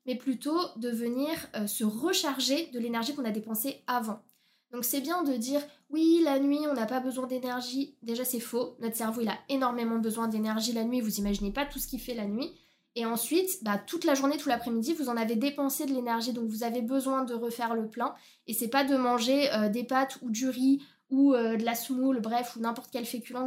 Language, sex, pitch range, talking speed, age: French, female, 230-275 Hz, 230 wpm, 20-39